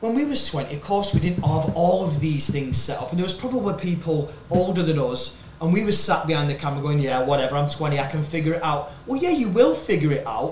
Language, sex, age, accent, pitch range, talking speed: English, male, 20-39, British, 145-175 Hz, 270 wpm